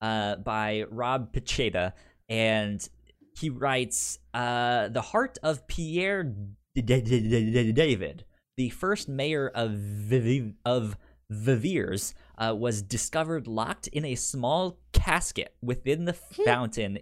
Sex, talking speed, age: male, 120 wpm, 20-39